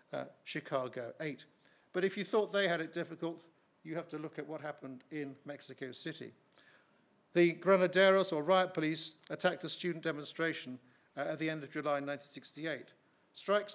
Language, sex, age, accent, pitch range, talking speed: English, male, 50-69, British, 145-170 Hz, 165 wpm